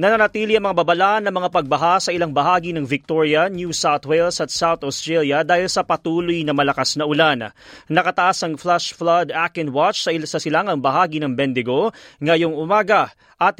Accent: native